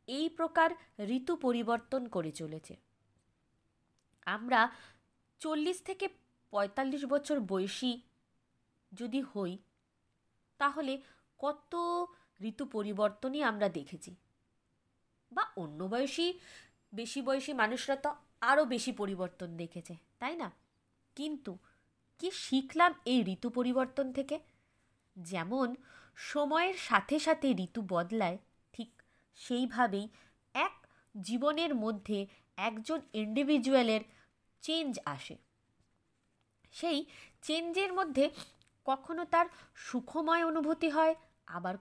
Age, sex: 20-39, female